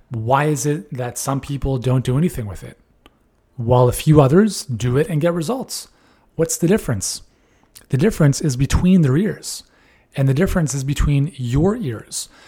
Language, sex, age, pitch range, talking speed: English, male, 30-49, 125-165 Hz, 175 wpm